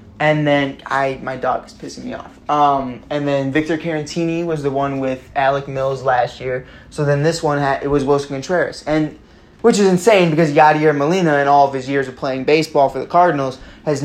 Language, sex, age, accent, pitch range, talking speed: English, male, 20-39, American, 130-150 Hz, 215 wpm